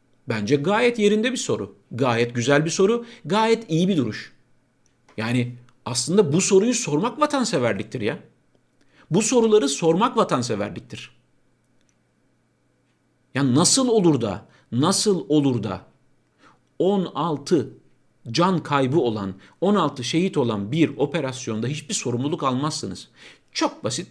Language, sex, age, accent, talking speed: Turkish, male, 50-69, native, 110 wpm